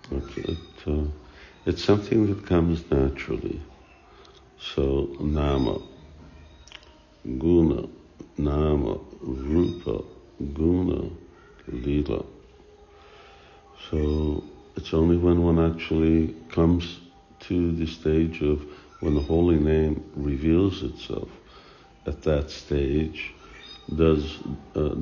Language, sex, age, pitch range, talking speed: English, male, 60-79, 75-85 Hz, 85 wpm